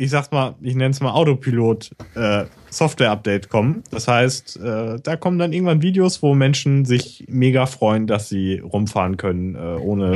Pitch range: 110-140 Hz